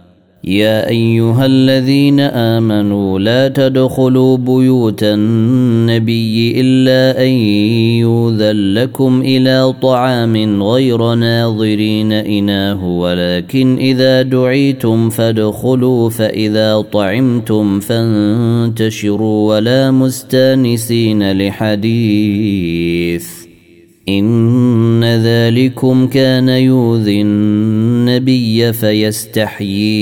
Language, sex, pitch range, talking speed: Arabic, male, 105-125 Hz, 65 wpm